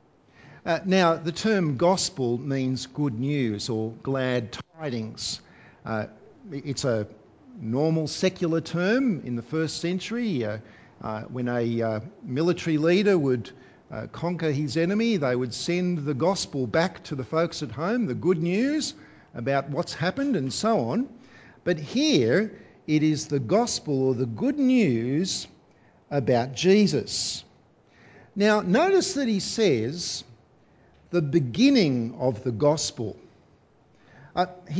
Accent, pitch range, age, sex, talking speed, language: Australian, 130-185 Hz, 50-69, male, 130 wpm, English